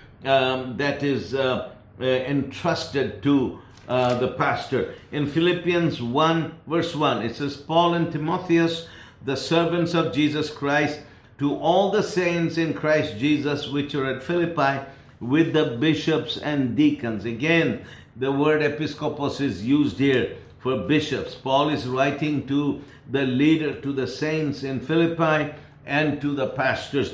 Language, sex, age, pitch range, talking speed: English, male, 60-79, 130-155 Hz, 145 wpm